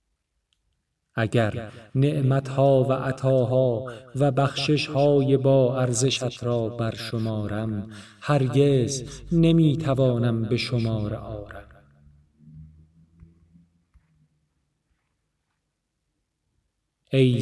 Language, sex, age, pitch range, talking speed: Persian, male, 40-59, 105-140 Hz, 60 wpm